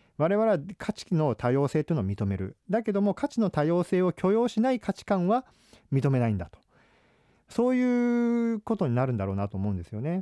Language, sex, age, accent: Japanese, male, 40-59, native